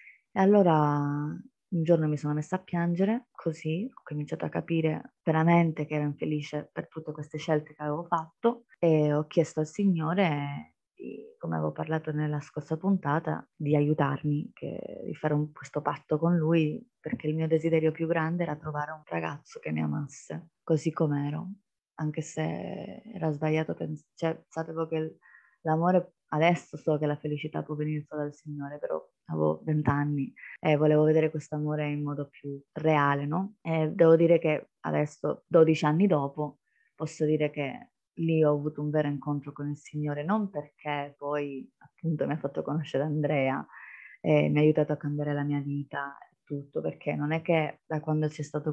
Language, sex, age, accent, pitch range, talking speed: Italian, female, 20-39, native, 145-160 Hz, 170 wpm